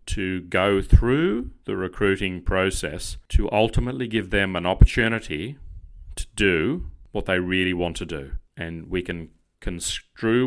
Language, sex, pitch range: English, male, 85-100 Hz